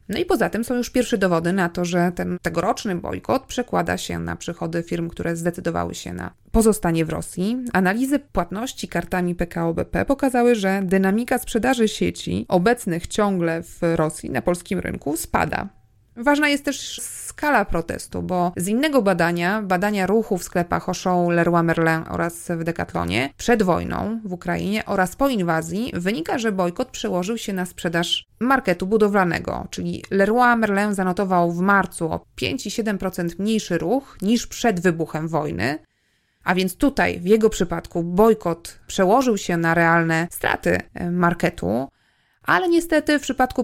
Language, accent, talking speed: Polish, native, 150 wpm